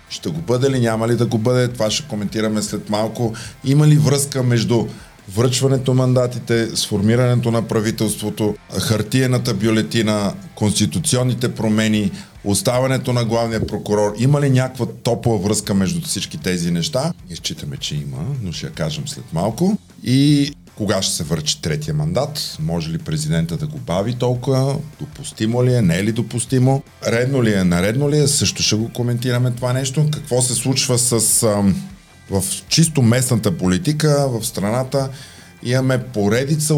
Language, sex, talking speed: Bulgarian, male, 155 wpm